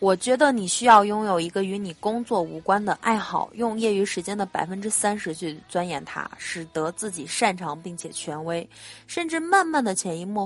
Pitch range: 170-230 Hz